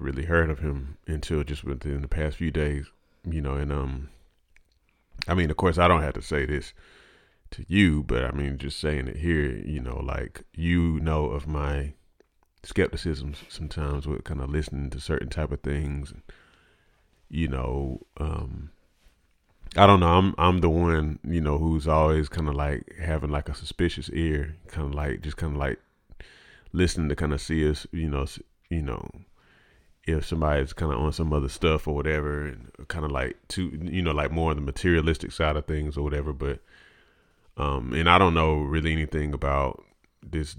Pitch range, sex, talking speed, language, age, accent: 70-85 Hz, male, 190 wpm, English, 30-49, American